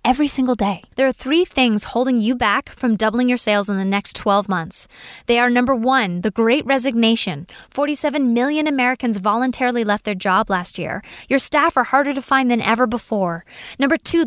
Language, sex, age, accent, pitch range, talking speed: English, female, 10-29, American, 205-270 Hz, 195 wpm